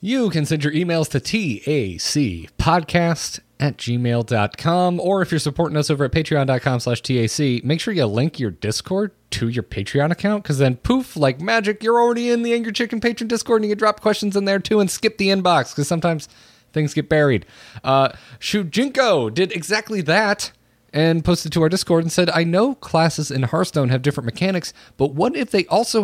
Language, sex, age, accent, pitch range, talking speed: English, male, 30-49, American, 120-180 Hz, 195 wpm